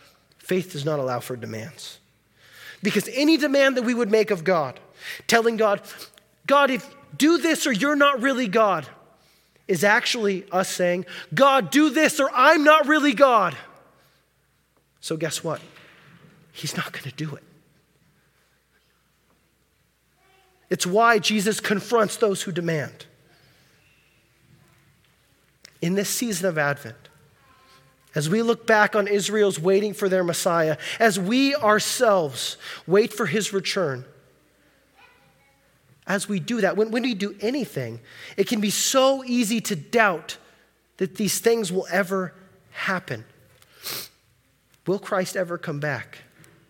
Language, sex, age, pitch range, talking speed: English, male, 30-49, 160-235 Hz, 130 wpm